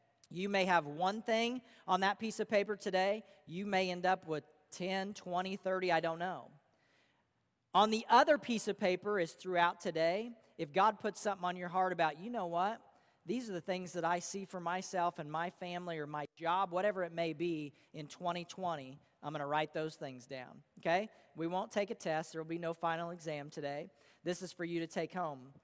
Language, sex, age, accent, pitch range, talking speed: English, male, 40-59, American, 170-270 Hz, 210 wpm